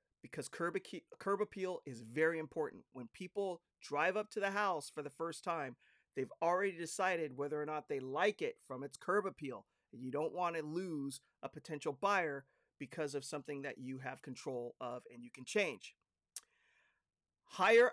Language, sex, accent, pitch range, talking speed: English, male, American, 140-195 Hz, 175 wpm